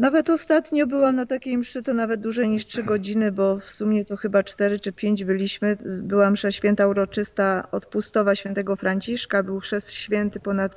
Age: 40-59